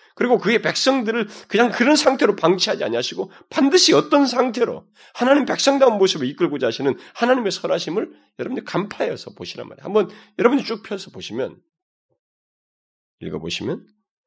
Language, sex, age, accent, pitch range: Korean, male, 40-59, native, 185-285 Hz